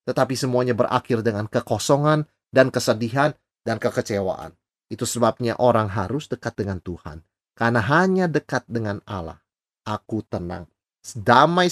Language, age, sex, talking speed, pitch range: Indonesian, 30-49, male, 125 wpm, 110-165 Hz